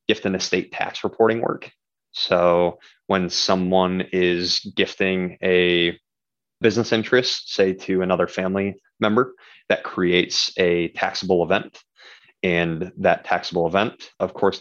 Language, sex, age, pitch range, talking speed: English, male, 20-39, 90-95 Hz, 125 wpm